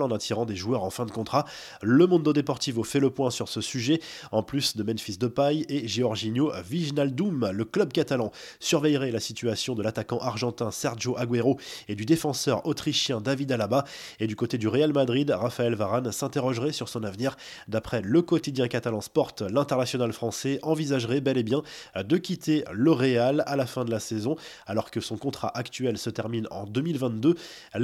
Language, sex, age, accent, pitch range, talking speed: French, male, 20-39, French, 115-145 Hz, 180 wpm